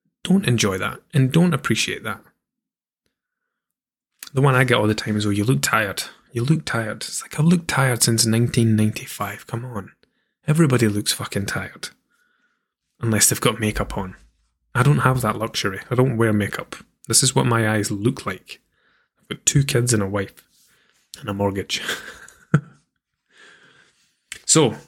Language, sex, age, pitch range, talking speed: English, male, 20-39, 105-140 Hz, 160 wpm